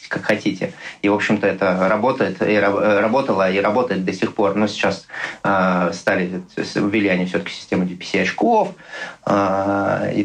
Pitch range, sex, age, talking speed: 95-105 Hz, male, 20-39, 150 wpm